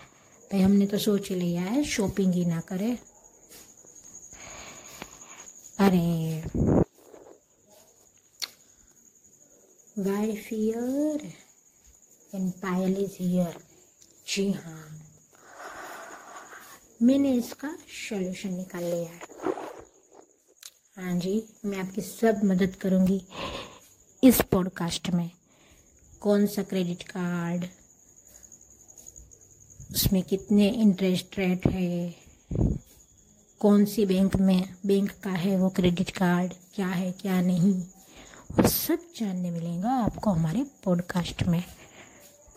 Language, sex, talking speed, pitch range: Hindi, female, 85 wpm, 175-210 Hz